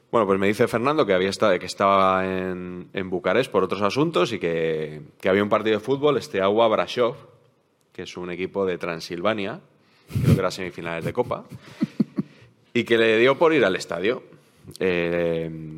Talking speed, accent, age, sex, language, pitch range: 185 wpm, Spanish, 20-39, male, Spanish, 85-105 Hz